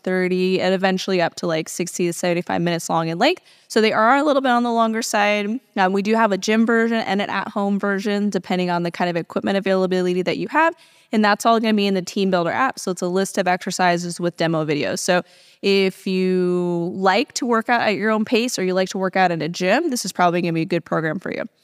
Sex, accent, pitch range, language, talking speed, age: female, American, 180-210 Hz, English, 265 wpm, 20-39